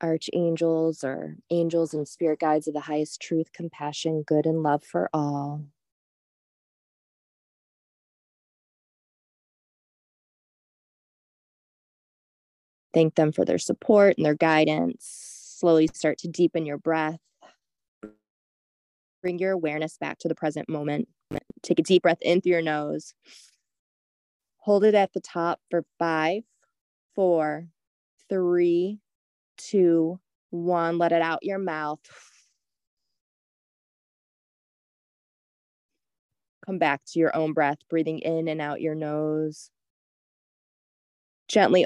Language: English